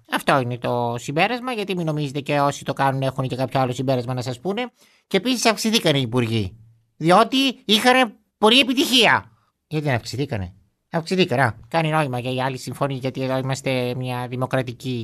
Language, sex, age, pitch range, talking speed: Greek, male, 30-49, 130-205 Hz, 170 wpm